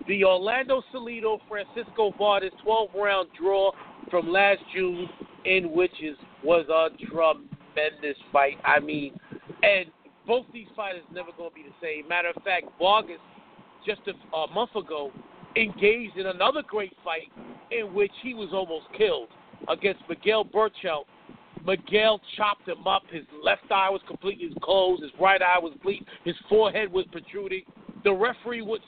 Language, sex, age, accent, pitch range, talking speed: English, male, 50-69, American, 180-225 Hz, 150 wpm